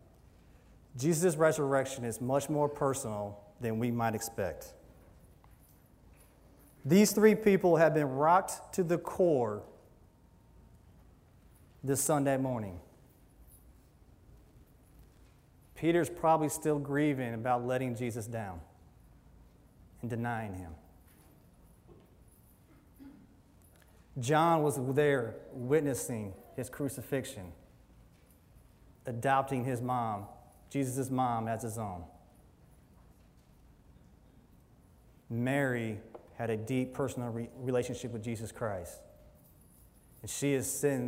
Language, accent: English, American